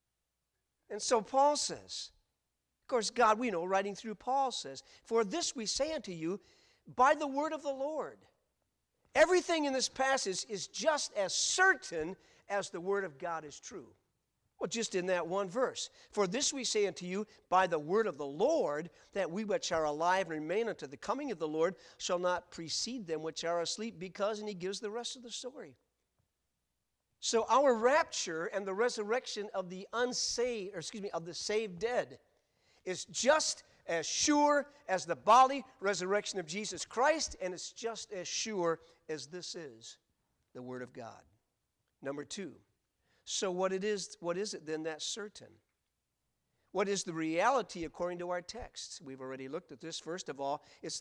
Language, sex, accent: English, male, American